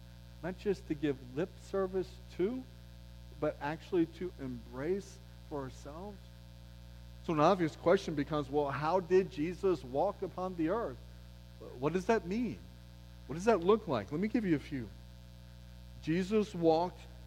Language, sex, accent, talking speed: English, male, American, 150 wpm